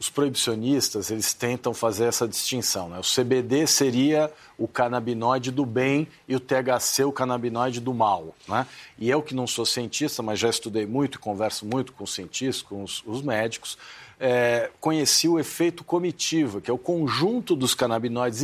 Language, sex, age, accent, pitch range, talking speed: Portuguese, male, 50-69, Brazilian, 125-165 Hz, 170 wpm